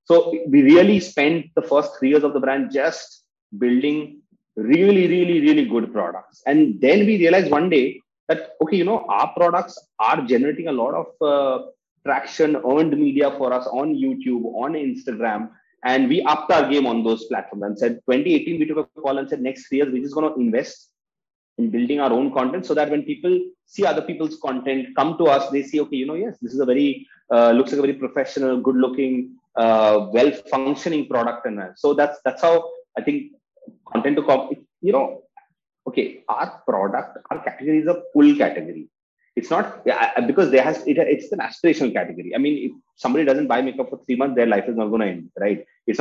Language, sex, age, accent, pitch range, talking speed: English, male, 30-49, Indian, 130-200 Hz, 205 wpm